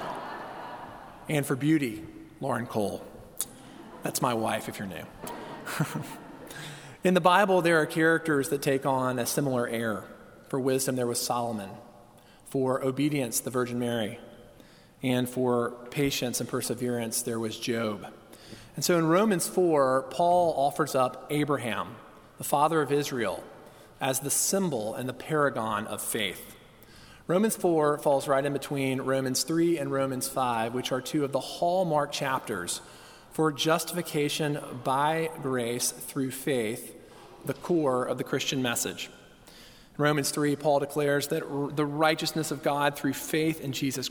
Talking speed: 145 wpm